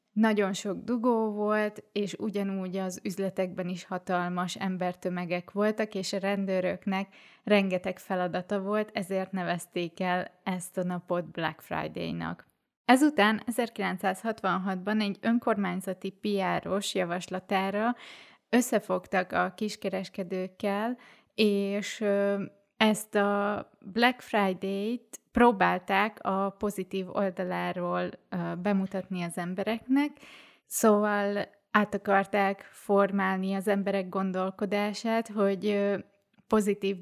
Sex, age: female, 20-39